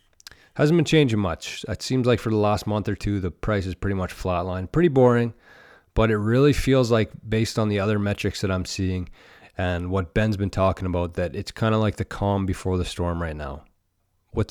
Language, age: English, 30-49